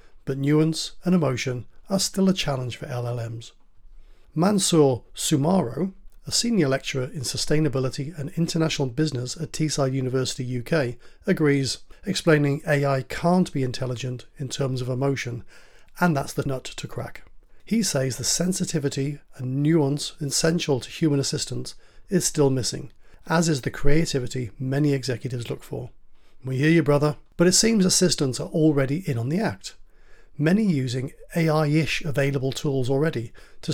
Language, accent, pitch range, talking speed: English, British, 130-160 Hz, 145 wpm